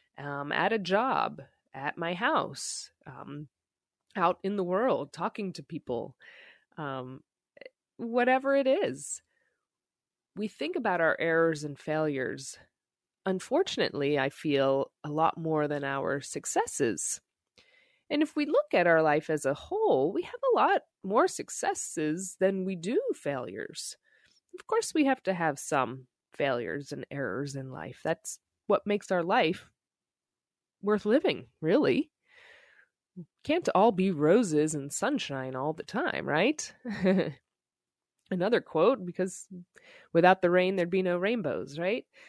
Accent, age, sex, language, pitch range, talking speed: American, 20-39, female, English, 150-240 Hz, 135 wpm